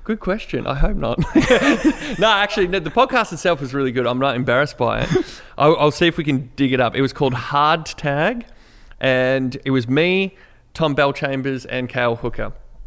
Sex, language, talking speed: male, English, 195 wpm